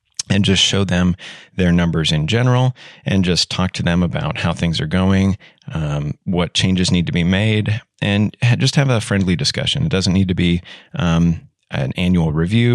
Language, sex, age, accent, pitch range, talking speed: English, male, 30-49, American, 90-120 Hz, 190 wpm